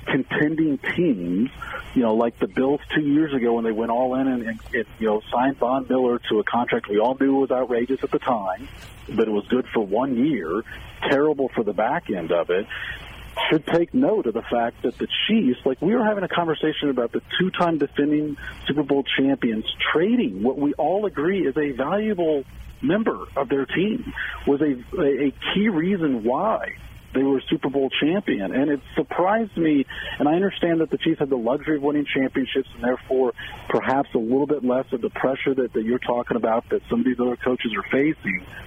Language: English